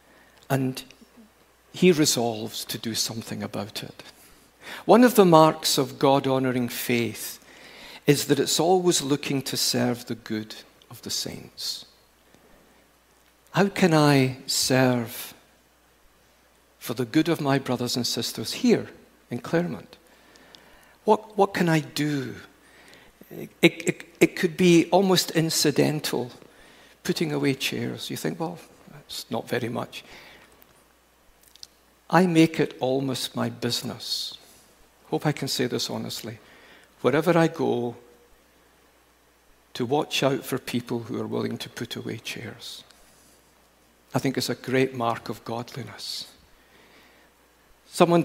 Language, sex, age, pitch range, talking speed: English, male, 60-79, 120-160 Hz, 125 wpm